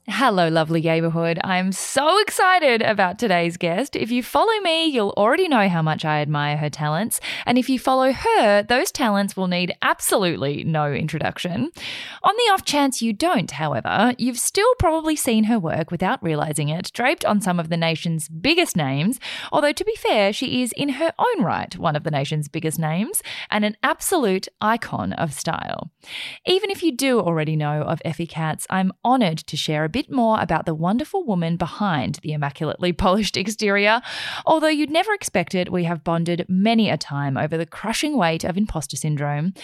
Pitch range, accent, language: 160-255 Hz, Australian, English